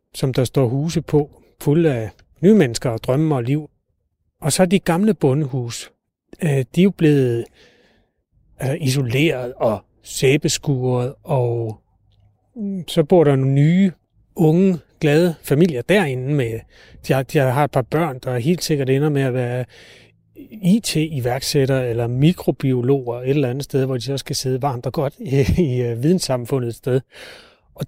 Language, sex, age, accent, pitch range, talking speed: Danish, male, 30-49, native, 125-155 Hz, 140 wpm